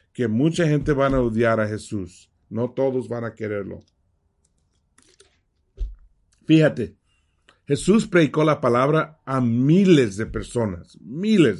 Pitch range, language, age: 105-155 Hz, English, 50-69